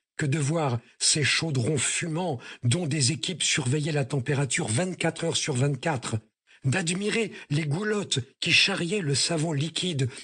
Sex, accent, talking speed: male, French, 135 wpm